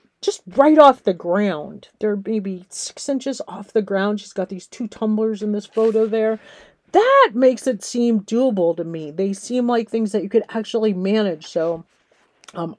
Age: 40-59